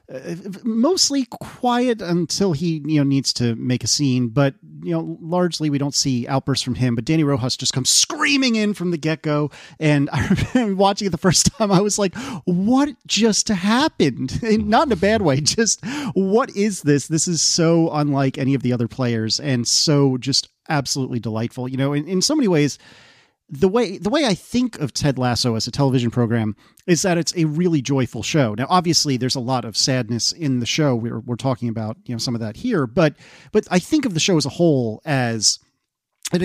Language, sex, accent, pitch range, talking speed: English, male, American, 125-175 Hz, 210 wpm